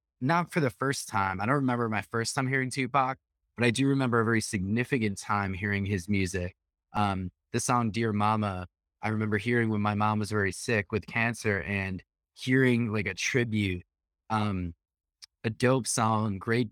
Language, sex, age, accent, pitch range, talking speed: English, male, 20-39, American, 100-120 Hz, 180 wpm